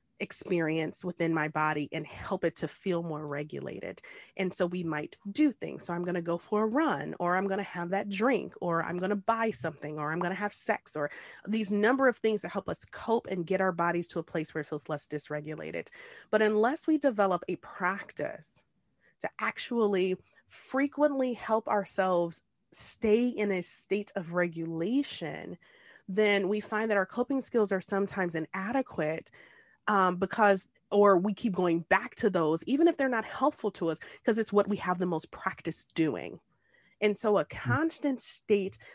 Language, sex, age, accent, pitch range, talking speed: English, female, 30-49, American, 170-225 Hz, 190 wpm